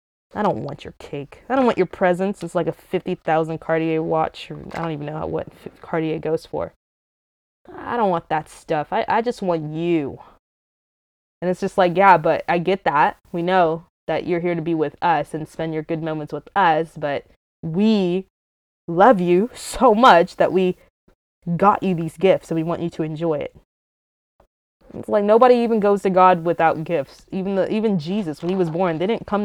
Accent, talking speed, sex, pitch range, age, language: American, 200 wpm, female, 160-195 Hz, 20-39, English